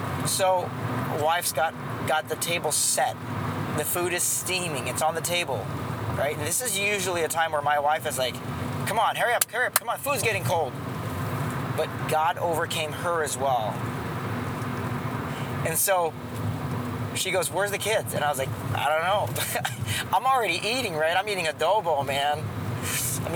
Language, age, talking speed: English, 20-39, 170 wpm